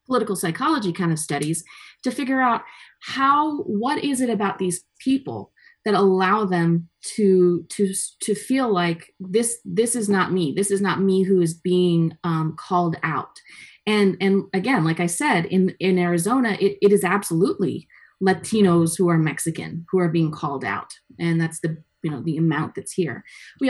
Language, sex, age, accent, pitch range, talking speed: English, female, 30-49, American, 170-205 Hz, 175 wpm